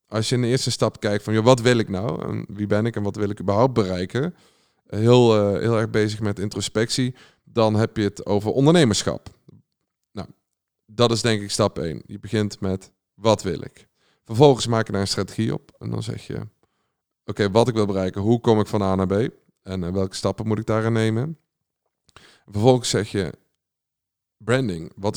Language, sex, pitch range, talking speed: Dutch, male, 100-115 Hz, 200 wpm